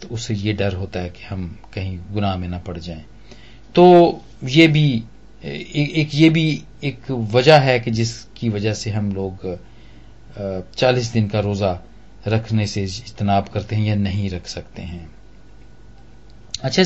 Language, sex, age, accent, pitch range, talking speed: Hindi, male, 40-59, native, 110-155 Hz, 155 wpm